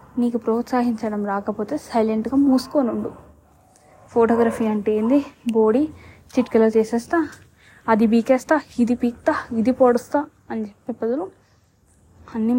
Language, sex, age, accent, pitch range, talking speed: Telugu, female, 20-39, native, 225-280 Hz, 105 wpm